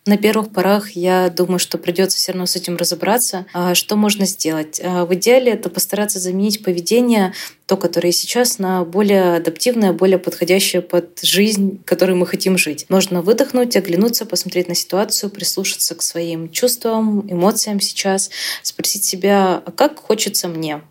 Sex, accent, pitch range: female, native, 175-200 Hz